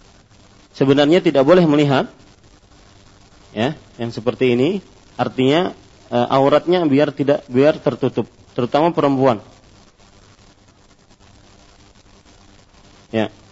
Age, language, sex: 40-59, Malay, male